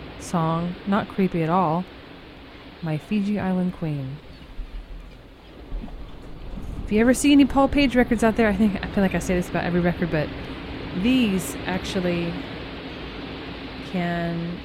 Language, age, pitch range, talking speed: English, 20-39, 165-205 Hz, 140 wpm